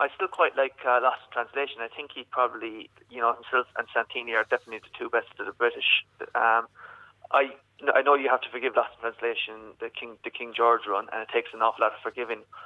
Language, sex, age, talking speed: English, male, 20-39, 235 wpm